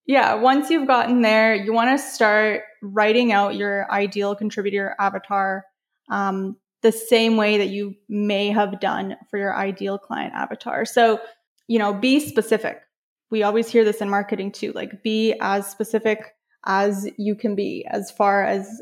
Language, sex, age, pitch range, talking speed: English, female, 20-39, 205-225 Hz, 165 wpm